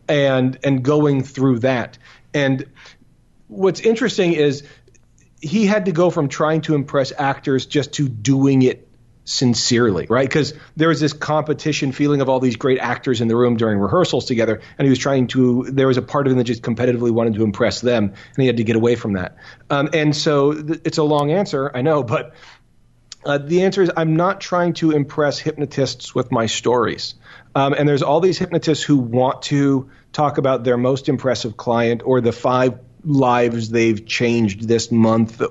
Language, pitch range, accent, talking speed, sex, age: English, 120-150 Hz, American, 190 wpm, male, 40-59